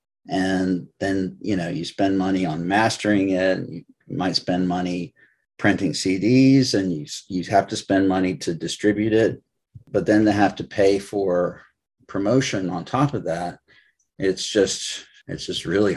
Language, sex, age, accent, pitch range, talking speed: English, male, 40-59, American, 95-105 Hz, 160 wpm